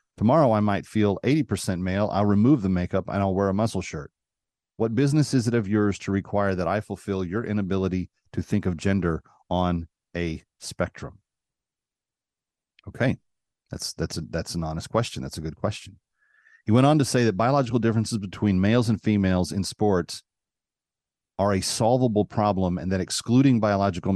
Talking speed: 175 wpm